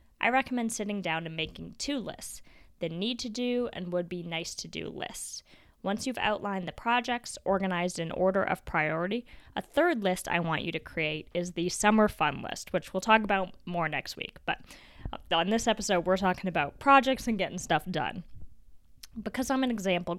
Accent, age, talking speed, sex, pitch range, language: American, 20-39, 175 wpm, female, 165-210 Hz, English